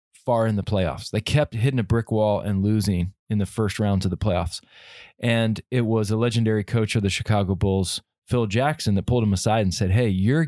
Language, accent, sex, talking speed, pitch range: English, American, male, 225 wpm, 100-120 Hz